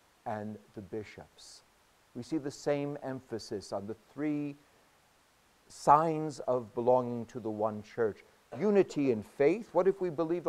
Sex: male